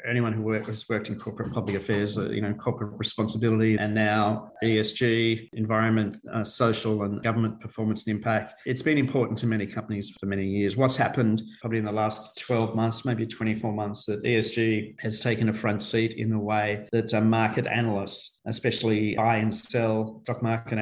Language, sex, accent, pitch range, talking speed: English, male, Australian, 110-120 Hz, 185 wpm